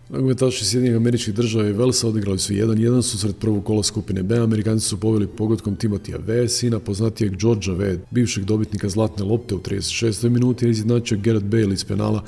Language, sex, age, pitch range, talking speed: Croatian, male, 40-59, 105-120 Hz, 190 wpm